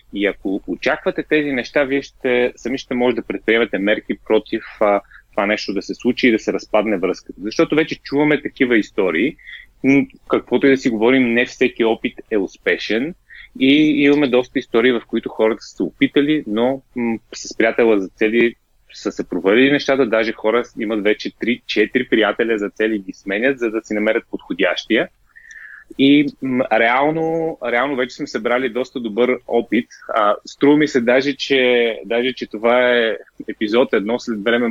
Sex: male